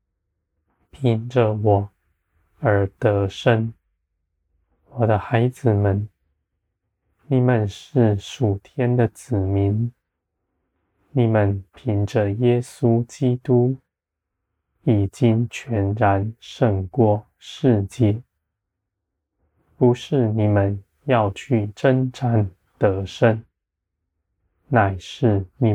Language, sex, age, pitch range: Chinese, male, 20-39, 90-120 Hz